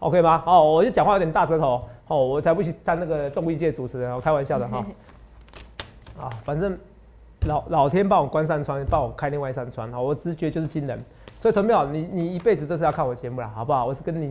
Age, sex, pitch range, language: 30-49, male, 135-180 Hz, Chinese